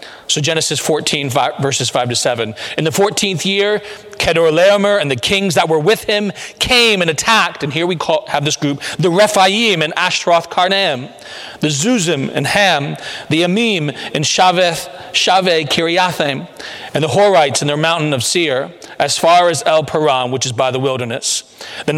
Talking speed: 165 wpm